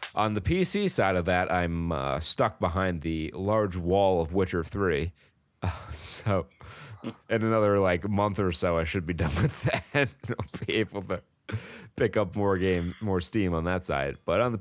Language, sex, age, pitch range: English, male, 30-49, 90-130 Hz